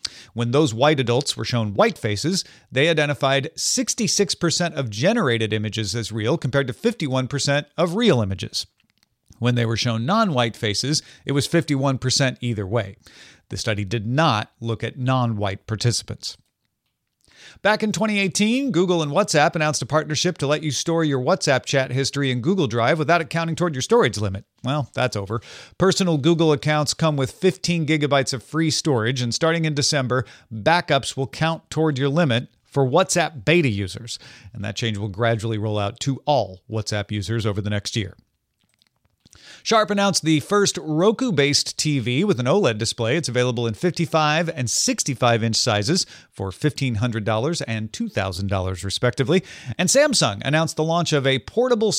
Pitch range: 115-165 Hz